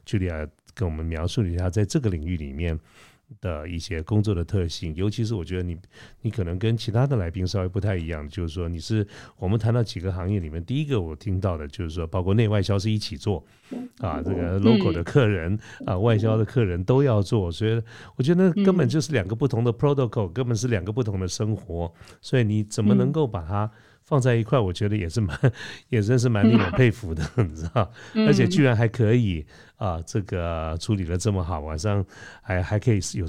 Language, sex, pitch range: Chinese, male, 90-115 Hz